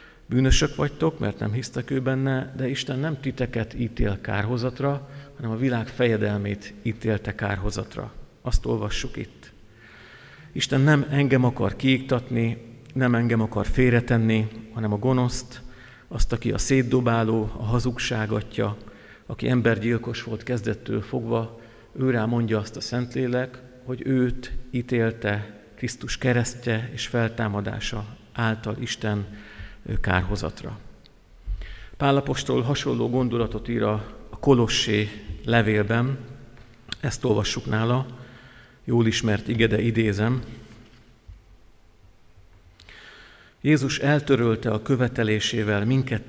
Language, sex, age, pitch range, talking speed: Hungarian, male, 50-69, 110-125 Hz, 100 wpm